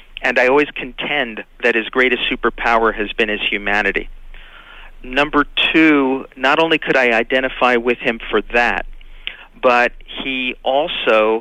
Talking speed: 135 wpm